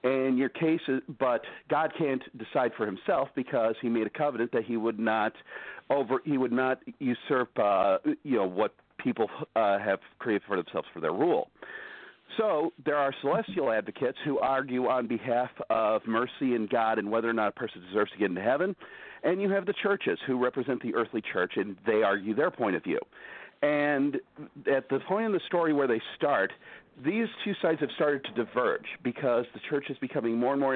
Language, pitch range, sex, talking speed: English, 120-160 Hz, male, 200 wpm